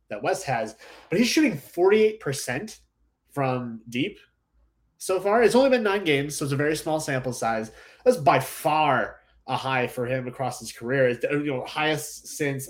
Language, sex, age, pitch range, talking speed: English, male, 20-39, 125-155 Hz, 185 wpm